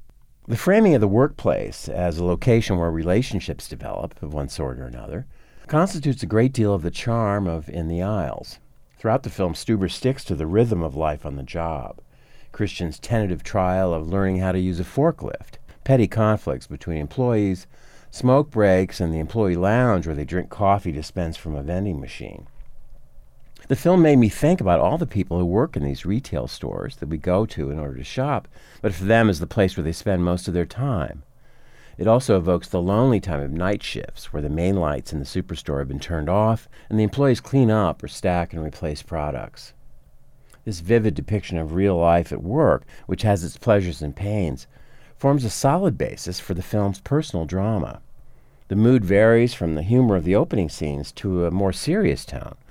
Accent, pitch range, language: American, 80-110 Hz, English